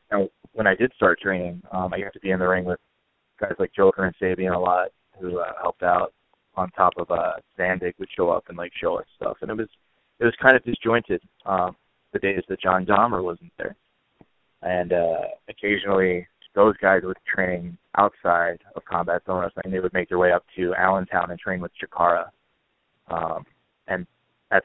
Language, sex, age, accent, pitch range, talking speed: English, male, 20-39, American, 90-95 Hz, 200 wpm